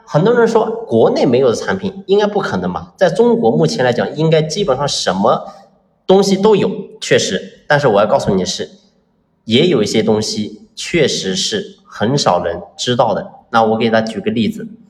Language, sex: Chinese, male